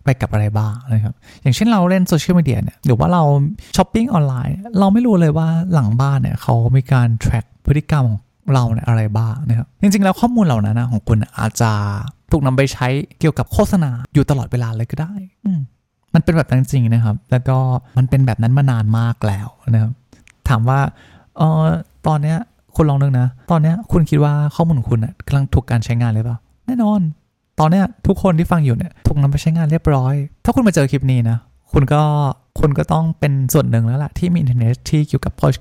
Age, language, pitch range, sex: 20-39, Thai, 120-155 Hz, male